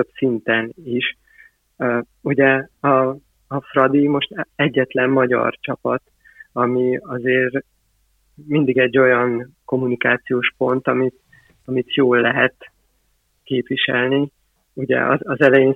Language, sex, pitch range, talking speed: Hungarian, male, 125-135 Hz, 105 wpm